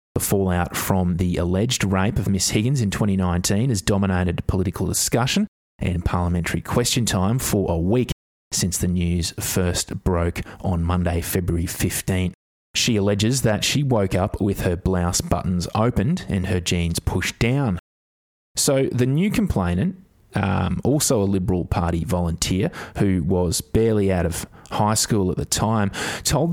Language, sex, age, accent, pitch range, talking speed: English, male, 20-39, Australian, 90-110 Hz, 155 wpm